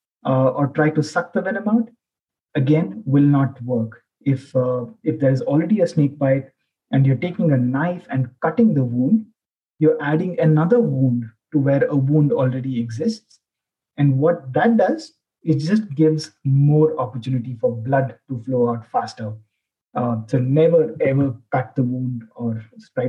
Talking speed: 165 wpm